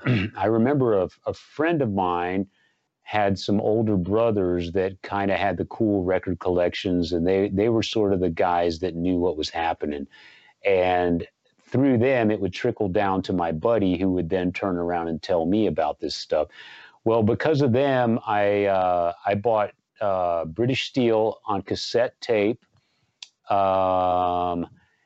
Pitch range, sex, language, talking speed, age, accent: 90-115 Hz, male, English, 165 wpm, 40-59, American